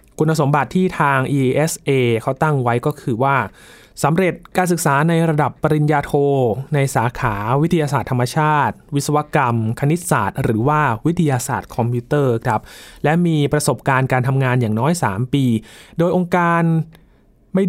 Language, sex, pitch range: Thai, male, 120-150 Hz